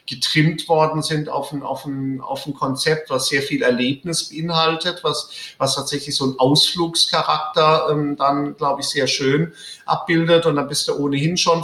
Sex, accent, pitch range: male, German, 140-165 Hz